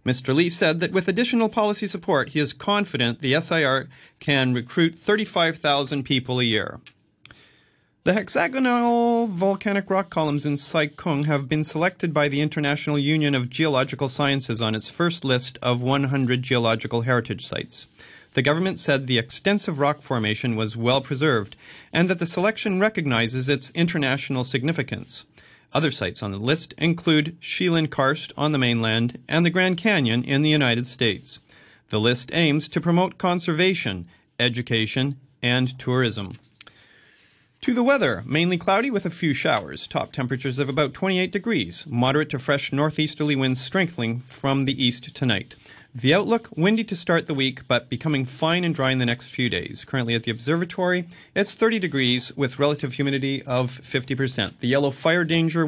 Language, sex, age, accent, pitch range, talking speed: English, male, 40-59, American, 125-170 Hz, 160 wpm